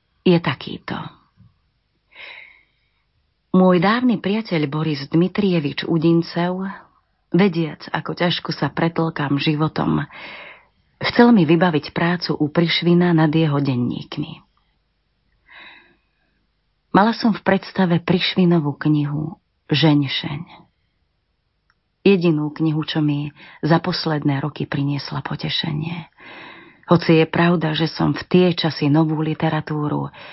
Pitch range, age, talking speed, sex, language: 150-180 Hz, 30-49, 95 wpm, female, Slovak